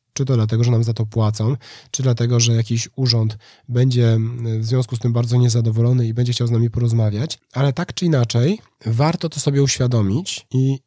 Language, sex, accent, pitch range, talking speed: Polish, male, native, 115-140 Hz, 195 wpm